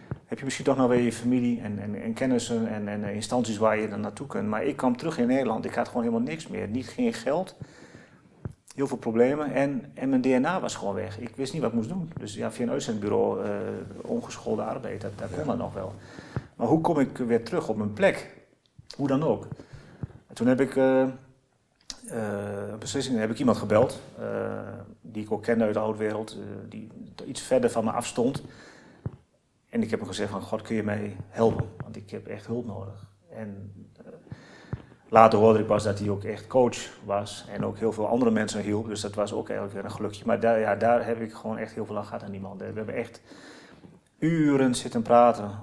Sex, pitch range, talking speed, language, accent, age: male, 105-120 Hz, 225 wpm, Dutch, Dutch, 40-59